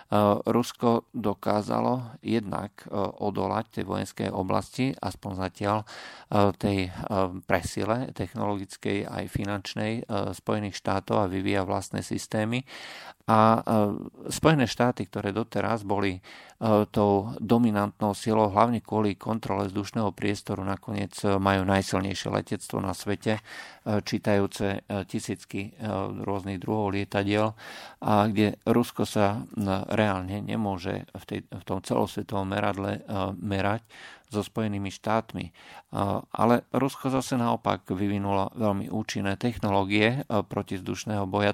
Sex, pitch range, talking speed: male, 100-110 Hz, 110 wpm